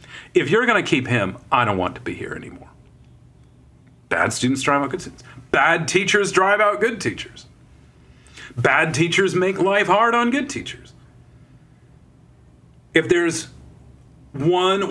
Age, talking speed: 40-59, 145 wpm